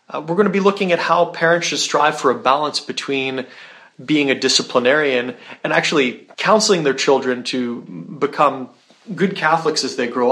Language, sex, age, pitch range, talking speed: English, male, 30-49, 125-160 Hz, 170 wpm